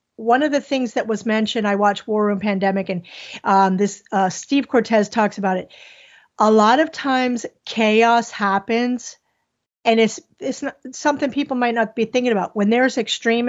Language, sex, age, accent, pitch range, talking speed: English, female, 40-59, American, 205-250 Hz, 185 wpm